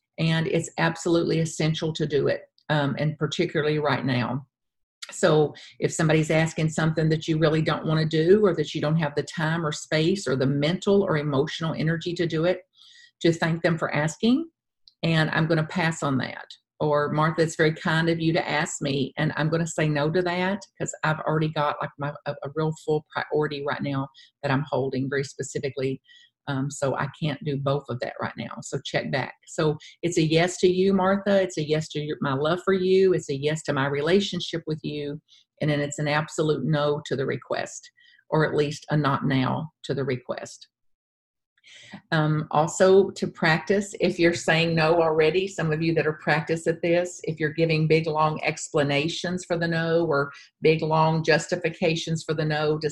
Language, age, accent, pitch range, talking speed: English, 50-69, American, 150-170 Hz, 195 wpm